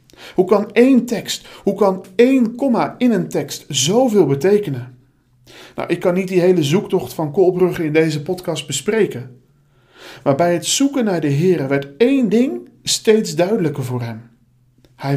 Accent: Dutch